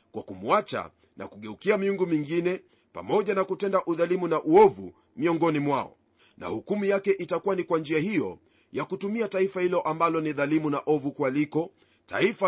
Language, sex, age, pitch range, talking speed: Swahili, male, 40-59, 145-180 Hz, 155 wpm